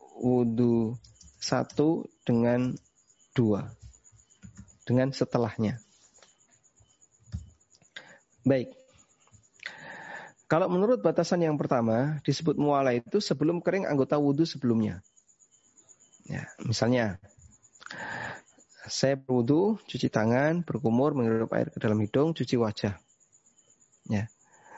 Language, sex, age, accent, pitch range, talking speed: Indonesian, male, 30-49, native, 115-155 Hz, 85 wpm